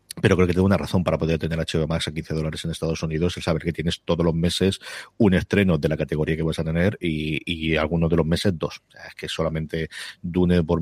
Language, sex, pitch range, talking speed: Spanish, male, 80-95 Hz, 260 wpm